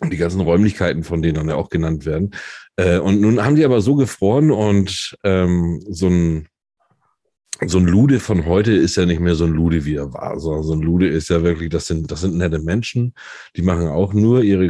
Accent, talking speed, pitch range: German, 210 wpm, 85-120 Hz